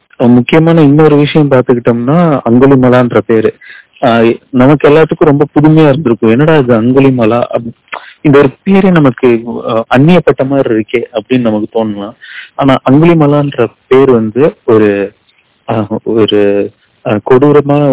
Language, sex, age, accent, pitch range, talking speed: Tamil, male, 30-49, native, 115-140 Hz, 105 wpm